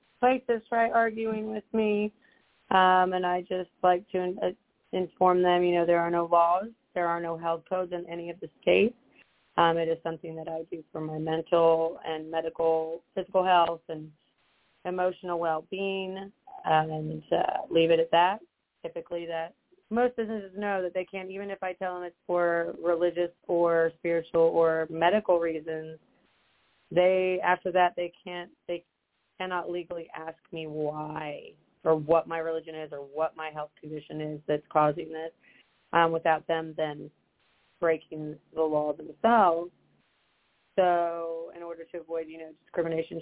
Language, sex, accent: English, female, American